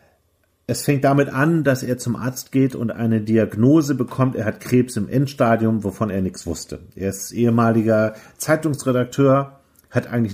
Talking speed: 165 wpm